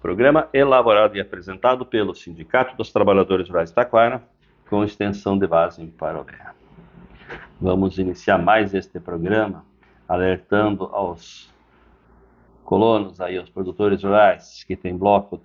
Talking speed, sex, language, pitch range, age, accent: 120 wpm, male, Portuguese, 95-110 Hz, 50-69, Brazilian